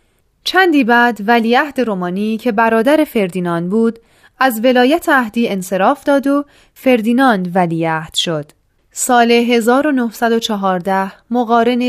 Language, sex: Persian, female